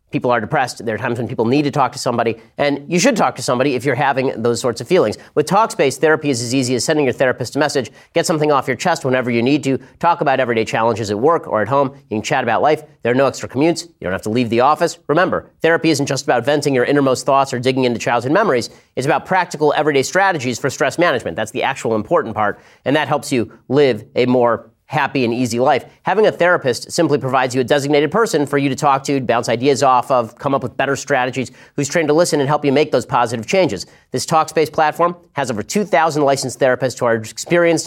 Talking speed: 245 wpm